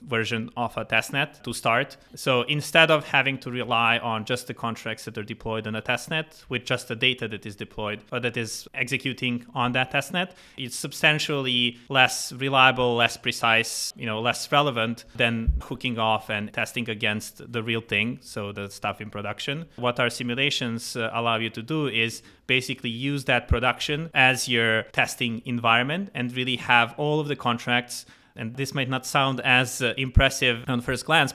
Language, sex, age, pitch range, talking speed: English, male, 30-49, 115-135 Hz, 180 wpm